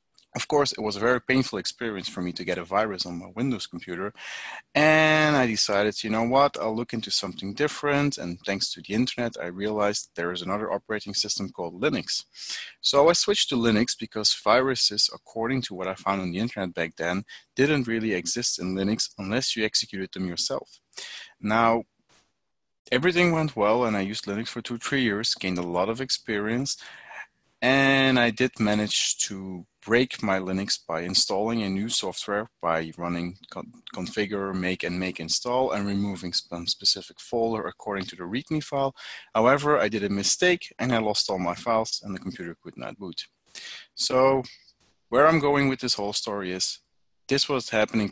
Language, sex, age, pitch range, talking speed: English, male, 30-49, 95-125 Hz, 180 wpm